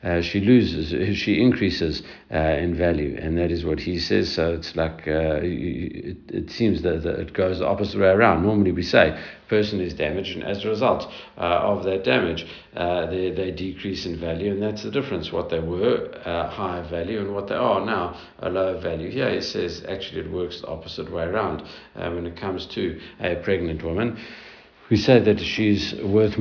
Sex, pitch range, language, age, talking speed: male, 85-100 Hz, English, 60-79, 200 wpm